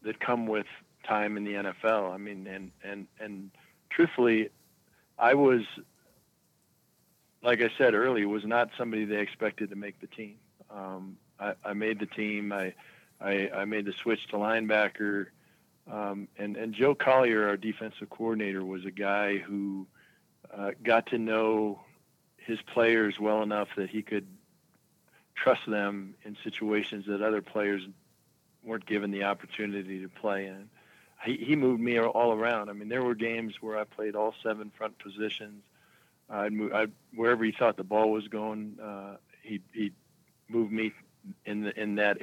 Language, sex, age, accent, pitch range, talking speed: English, male, 50-69, American, 100-115 Hz, 165 wpm